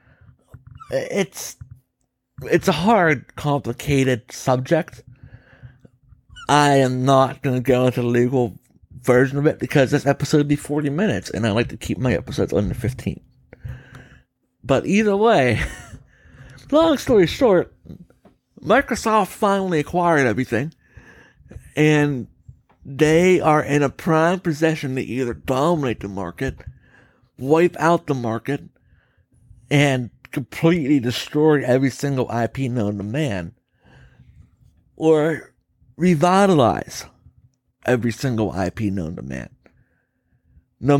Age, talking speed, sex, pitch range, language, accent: 60-79, 115 wpm, male, 125-170 Hz, English, American